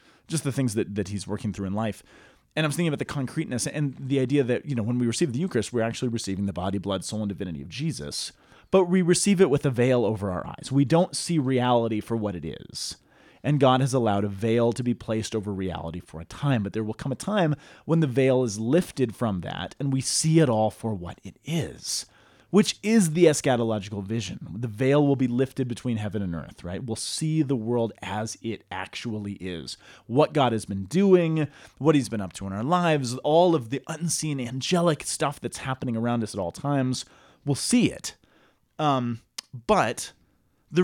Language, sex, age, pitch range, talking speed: English, male, 30-49, 110-155 Hz, 215 wpm